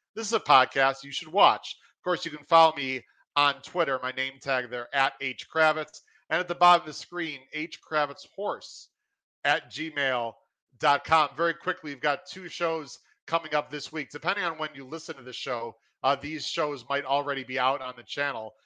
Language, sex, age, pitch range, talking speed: English, male, 40-59, 130-155 Hz, 190 wpm